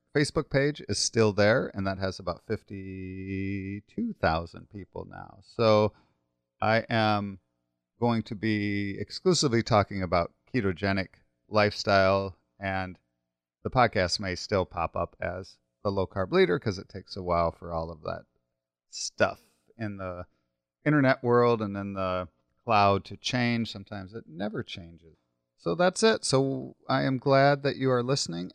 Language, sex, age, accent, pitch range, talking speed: English, male, 30-49, American, 90-125 Hz, 145 wpm